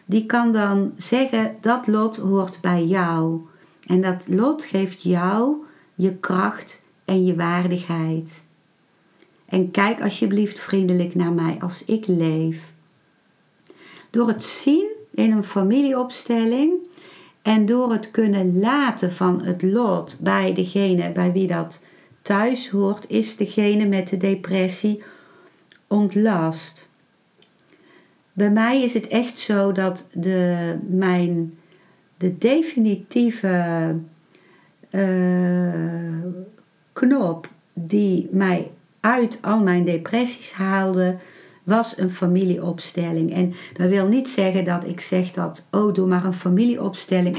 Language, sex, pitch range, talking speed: Dutch, female, 175-215 Hz, 115 wpm